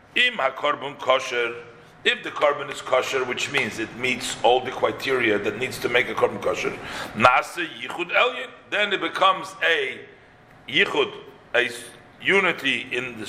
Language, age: English, 50-69